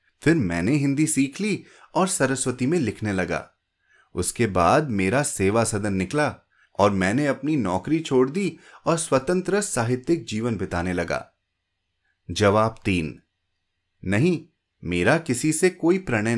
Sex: male